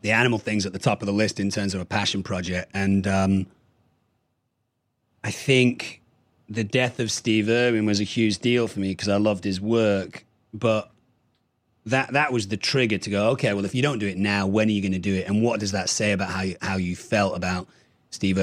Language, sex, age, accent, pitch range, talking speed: English, male, 30-49, British, 95-115 Hz, 230 wpm